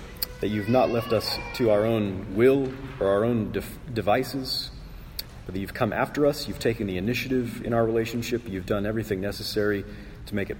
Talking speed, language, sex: 185 wpm, English, male